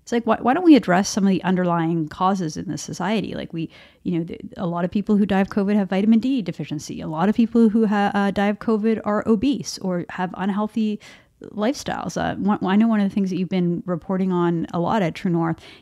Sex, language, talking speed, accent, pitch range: female, English, 250 wpm, American, 175-210 Hz